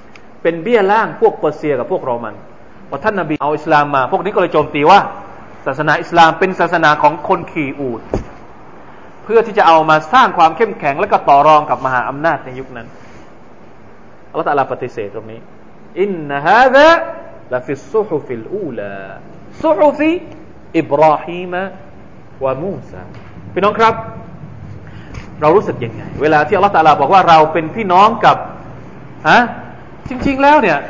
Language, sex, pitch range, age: Thai, male, 150-240 Hz, 30-49